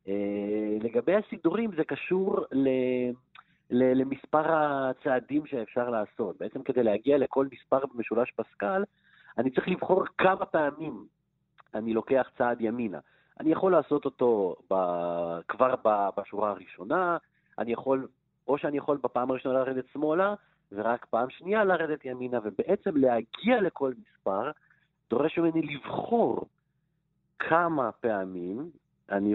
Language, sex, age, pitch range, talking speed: Hebrew, male, 40-59, 110-155 Hz, 120 wpm